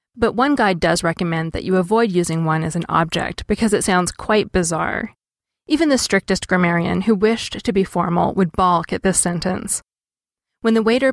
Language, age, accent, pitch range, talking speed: English, 20-39, American, 170-215 Hz, 190 wpm